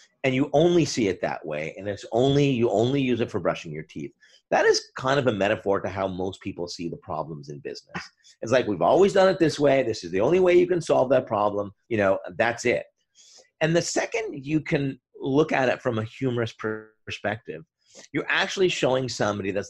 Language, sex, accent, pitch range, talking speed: English, male, American, 110-170 Hz, 220 wpm